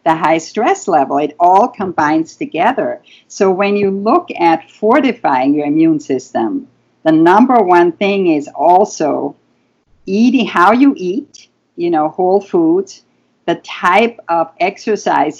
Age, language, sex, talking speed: 50-69, English, female, 135 wpm